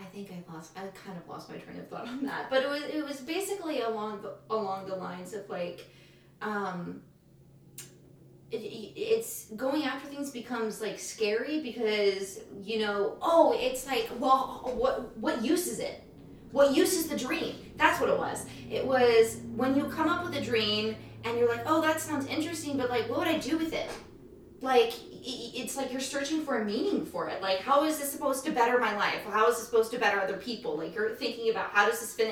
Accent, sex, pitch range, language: American, female, 215-285 Hz, English